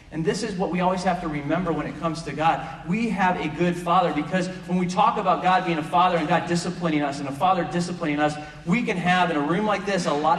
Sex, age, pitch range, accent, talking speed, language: male, 30-49, 145-180 Hz, American, 270 wpm, English